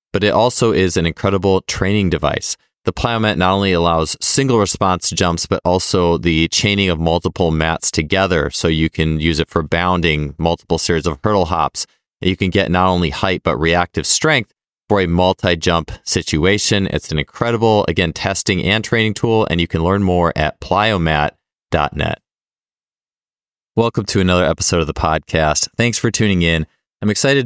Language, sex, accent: English, male, American